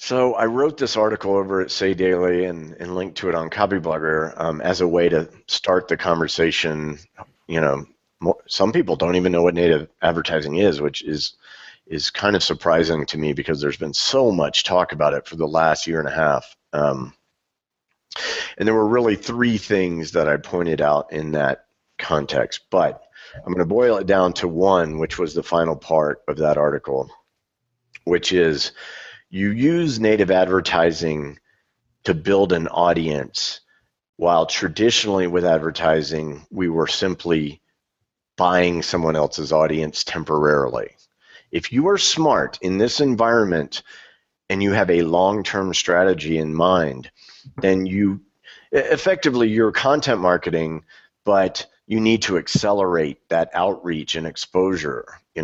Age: 50-69